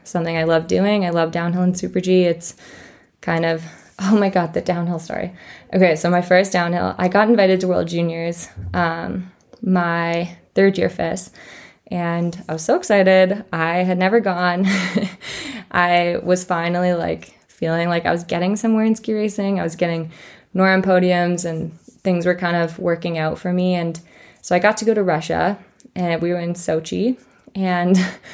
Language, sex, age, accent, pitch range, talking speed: English, female, 20-39, American, 170-195 Hz, 180 wpm